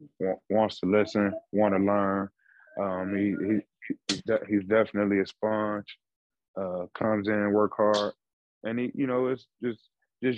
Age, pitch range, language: 20-39, 95-105 Hz, English